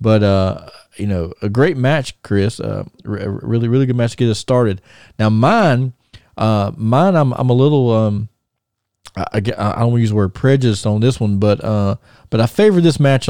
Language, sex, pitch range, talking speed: English, male, 100-125 Hz, 210 wpm